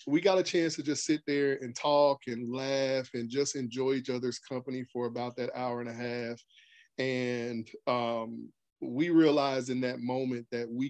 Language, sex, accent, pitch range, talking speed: English, male, American, 125-145 Hz, 185 wpm